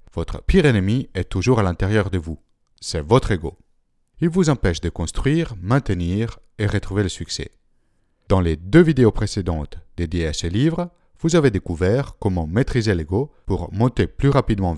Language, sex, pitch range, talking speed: French, male, 85-120 Hz, 165 wpm